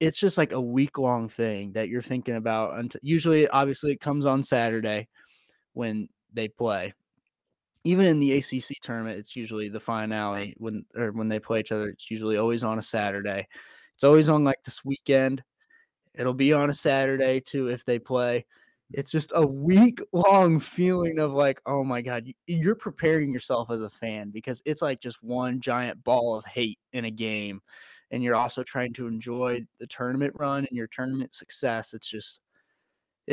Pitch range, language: 115-140 Hz, English